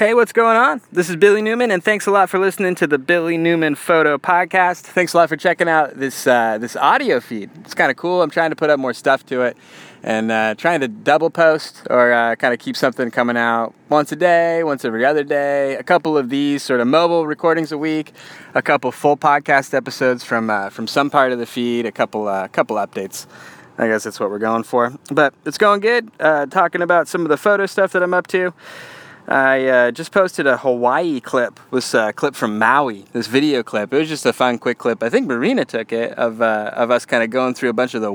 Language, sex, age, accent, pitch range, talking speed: English, male, 20-39, American, 115-160 Hz, 245 wpm